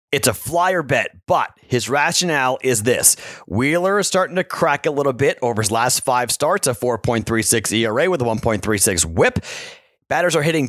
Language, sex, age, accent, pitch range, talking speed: English, male, 30-49, American, 115-145 Hz, 180 wpm